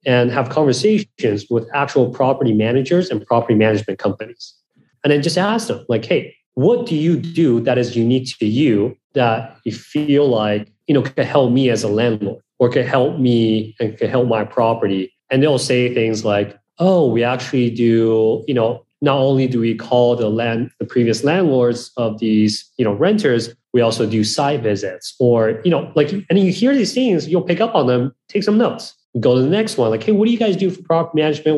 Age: 30-49